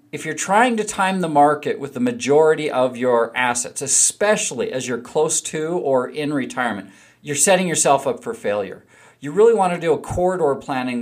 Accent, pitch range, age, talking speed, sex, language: American, 130-170 Hz, 40-59, 190 wpm, male, English